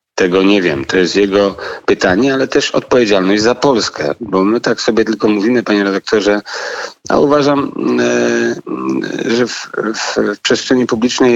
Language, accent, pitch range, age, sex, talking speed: Polish, native, 100-125 Hz, 40-59, male, 150 wpm